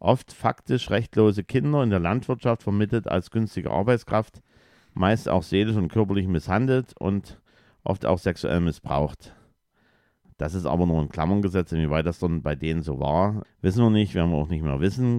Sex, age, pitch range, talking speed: male, 50-69, 85-125 Hz, 175 wpm